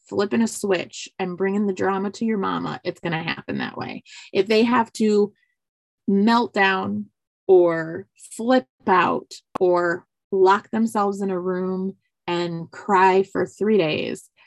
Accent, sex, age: American, female, 20-39